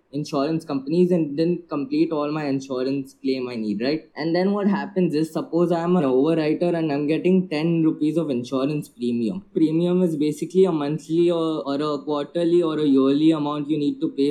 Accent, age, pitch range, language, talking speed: Indian, 20-39, 140-165 Hz, English, 195 wpm